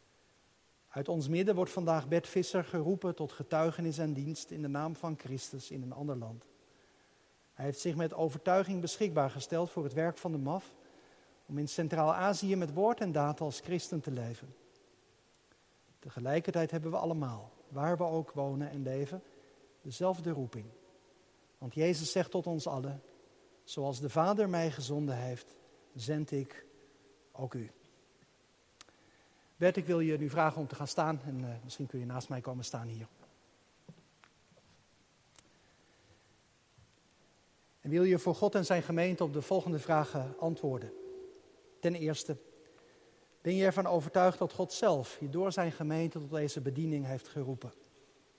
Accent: Dutch